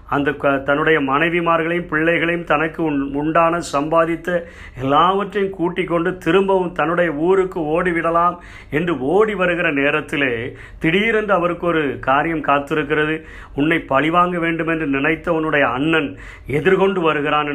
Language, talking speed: Tamil, 115 wpm